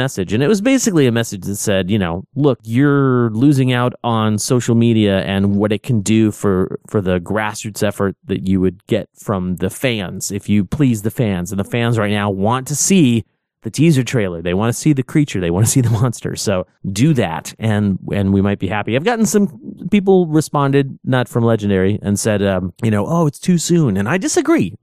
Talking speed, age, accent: 220 wpm, 30-49, American